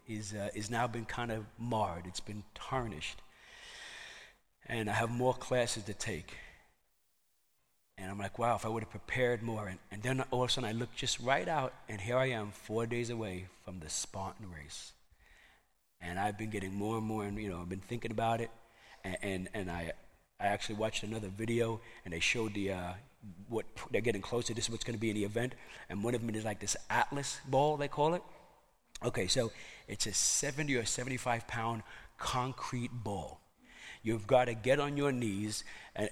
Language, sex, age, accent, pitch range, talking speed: English, male, 40-59, American, 105-140 Hz, 205 wpm